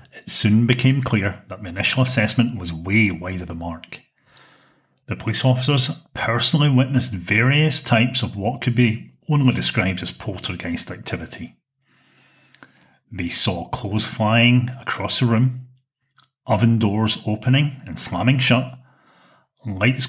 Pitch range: 105-130 Hz